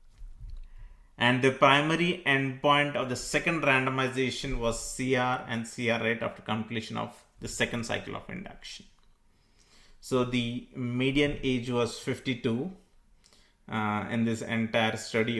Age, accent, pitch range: 30-49, Indian, 115-130 Hz